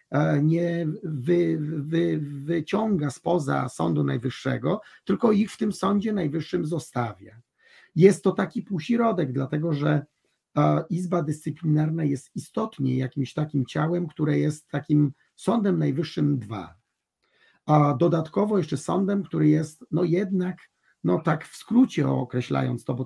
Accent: native